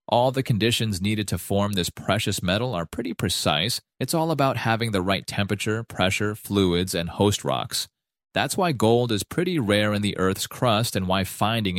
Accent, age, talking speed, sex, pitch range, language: American, 30-49, 190 wpm, male, 95-115 Hz, English